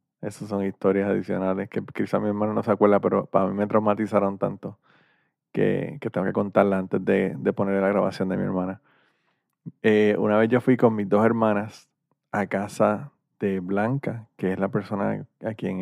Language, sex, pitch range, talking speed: Spanish, male, 100-125 Hz, 190 wpm